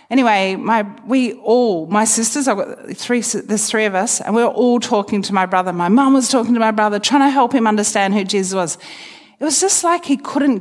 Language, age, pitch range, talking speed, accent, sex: English, 40-59, 185-245 Hz, 240 wpm, Australian, female